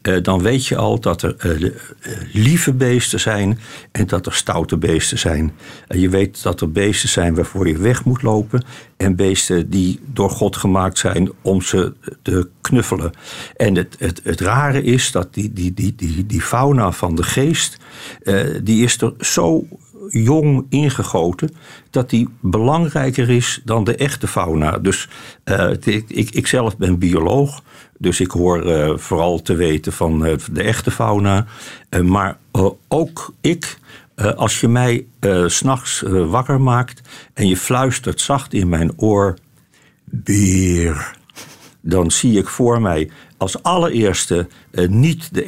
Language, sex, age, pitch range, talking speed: Dutch, male, 60-79, 90-125 Hz, 160 wpm